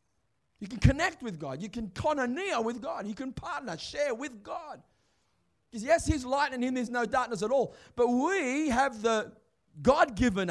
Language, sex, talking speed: English, male, 185 wpm